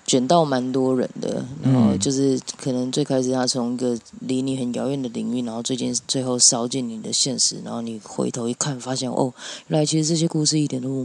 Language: Chinese